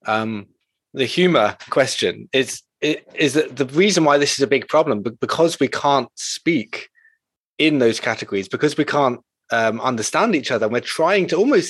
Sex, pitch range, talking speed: male, 120-160 Hz, 185 wpm